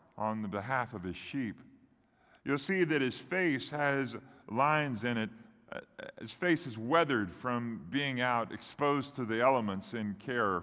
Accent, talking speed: American, 160 wpm